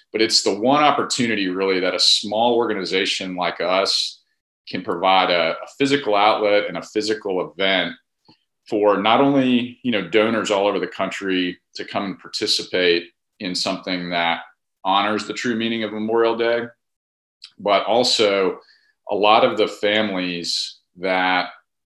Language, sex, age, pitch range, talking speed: English, male, 40-59, 85-105 Hz, 145 wpm